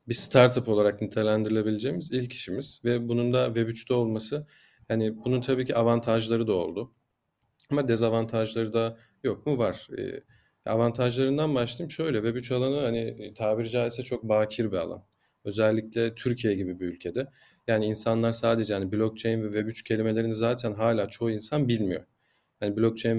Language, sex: Turkish, male